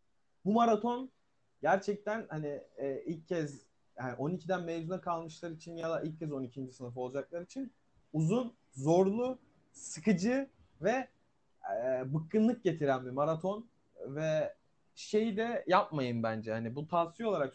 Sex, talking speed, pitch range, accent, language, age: male, 130 wpm, 165-225 Hz, native, Turkish, 30-49